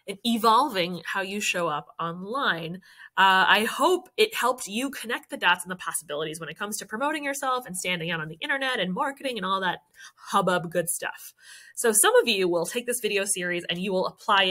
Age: 20-39